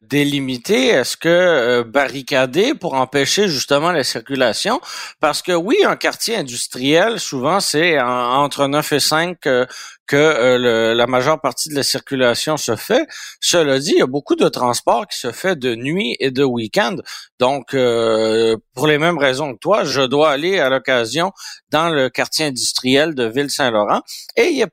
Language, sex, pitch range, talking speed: French, male, 130-165 Hz, 175 wpm